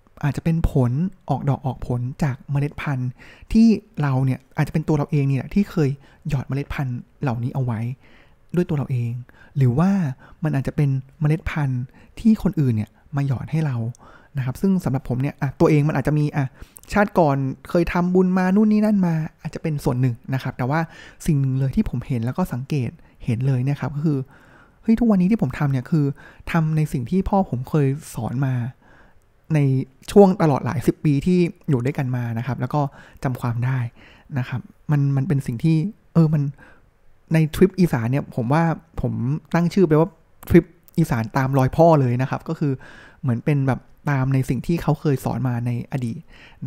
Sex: male